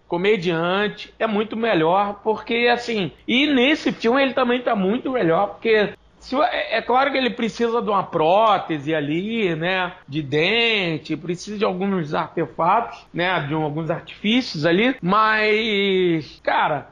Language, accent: Portuguese, Brazilian